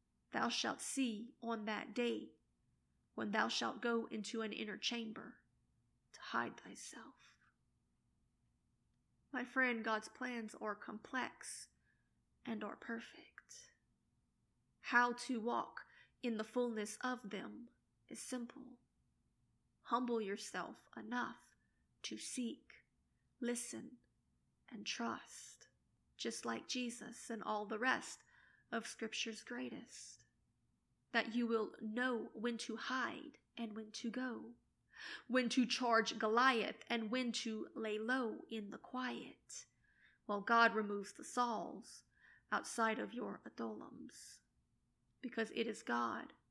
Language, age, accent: English, 30-49, American